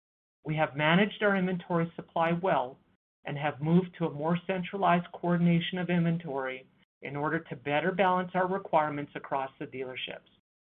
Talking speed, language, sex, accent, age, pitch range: 150 wpm, English, male, American, 40-59, 145-185 Hz